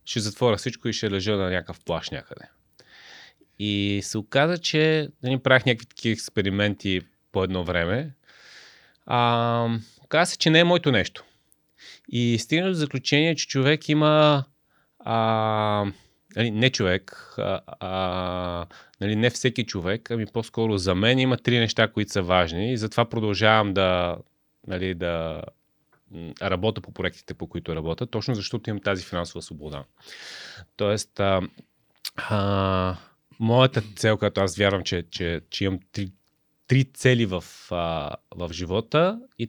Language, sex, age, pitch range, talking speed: Bulgarian, male, 30-49, 95-125 Hz, 145 wpm